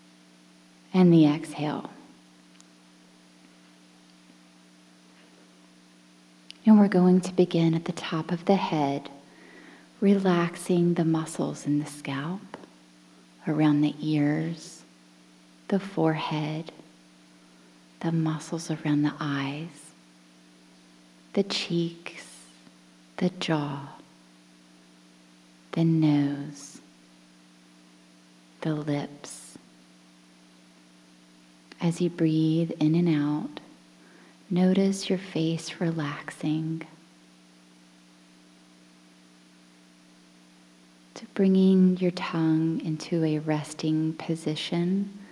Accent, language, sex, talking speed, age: American, English, female, 75 wpm, 30-49